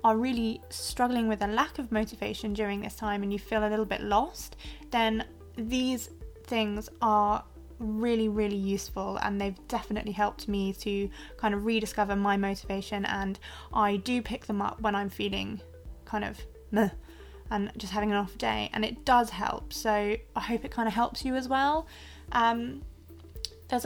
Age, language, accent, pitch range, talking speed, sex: 20-39, English, British, 205-235 Hz, 175 wpm, female